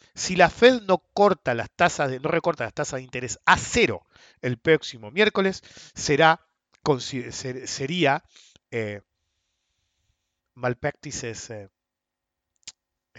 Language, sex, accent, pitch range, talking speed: English, male, Argentinian, 115-165 Hz, 115 wpm